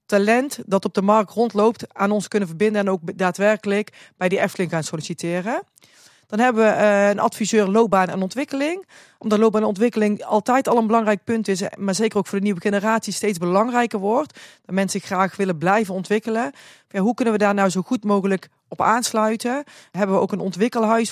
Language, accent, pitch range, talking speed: Dutch, Dutch, 185-225 Hz, 195 wpm